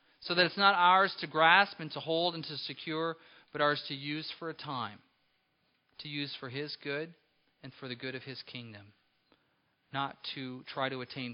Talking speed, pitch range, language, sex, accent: 195 wpm, 115-145 Hz, English, male, American